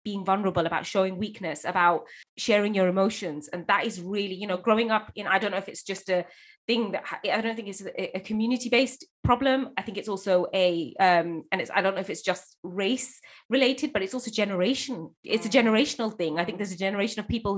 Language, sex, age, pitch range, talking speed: English, female, 20-39, 180-215 Hz, 225 wpm